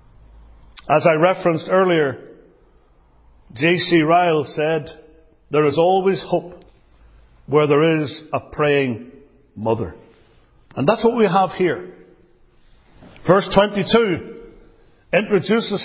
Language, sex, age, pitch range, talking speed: English, male, 60-79, 145-195 Hz, 100 wpm